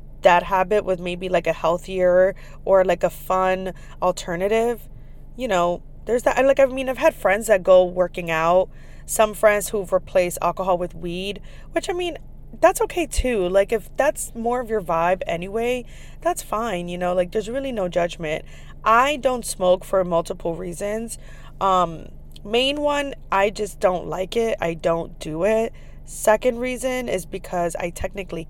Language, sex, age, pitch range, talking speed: English, female, 20-39, 175-225 Hz, 170 wpm